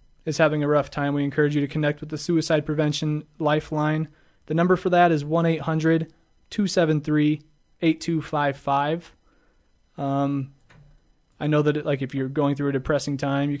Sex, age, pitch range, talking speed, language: male, 20-39, 145-165 Hz, 155 wpm, English